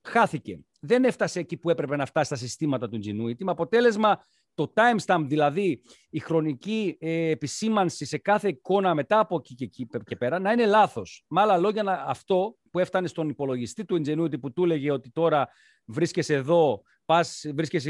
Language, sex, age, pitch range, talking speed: Greek, male, 40-59, 135-190 Hz, 170 wpm